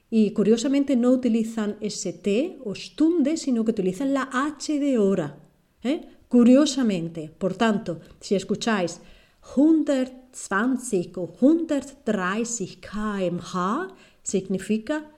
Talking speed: 100 wpm